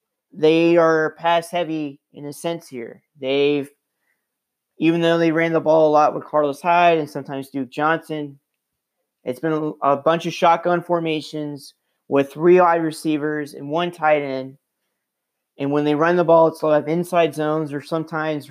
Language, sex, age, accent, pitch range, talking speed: English, male, 30-49, American, 145-165 Hz, 175 wpm